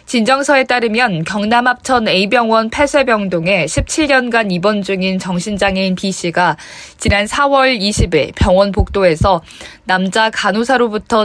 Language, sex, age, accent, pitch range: Korean, female, 20-39, native, 185-245 Hz